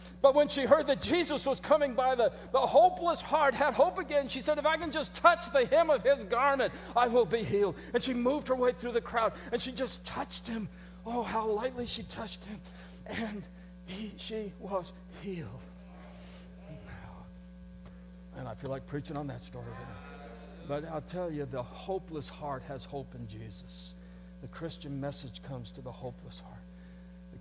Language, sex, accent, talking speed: English, male, American, 180 wpm